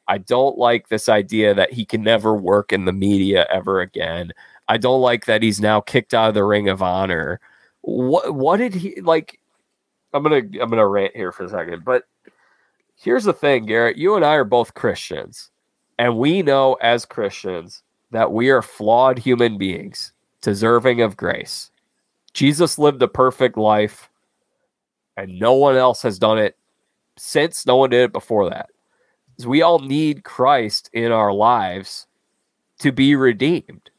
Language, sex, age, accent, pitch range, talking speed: English, male, 30-49, American, 115-150 Hz, 175 wpm